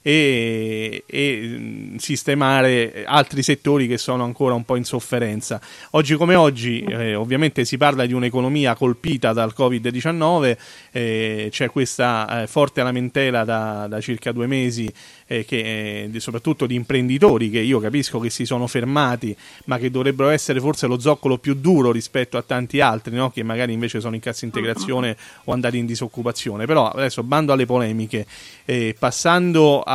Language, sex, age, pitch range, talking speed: Italian, male, 30-49, 115-135 Hz, 155 wpm